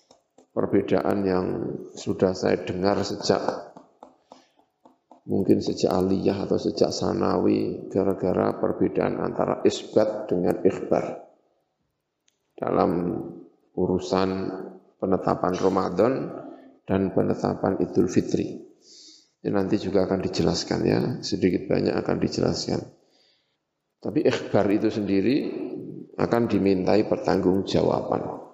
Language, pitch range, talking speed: Indonesian, 95-135 Hz, 90 wpm